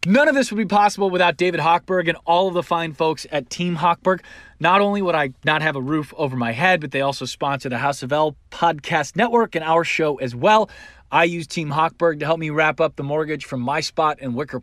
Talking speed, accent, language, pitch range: 245 wpm, American, English, 135-180 Hz